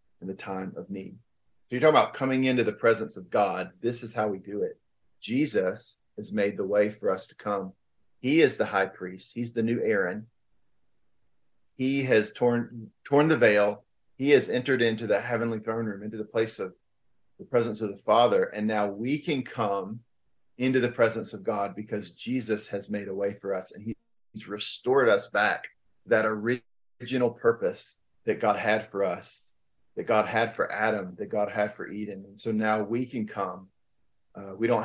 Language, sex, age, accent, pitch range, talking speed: English, male, 40-59, American, 105-120 Hz, 195 wpm